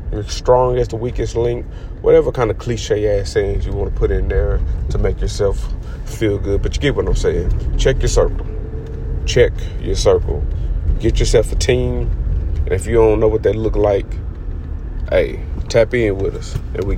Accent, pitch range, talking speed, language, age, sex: American, 85-115 Hz, 195 wpm, English, 30-49, male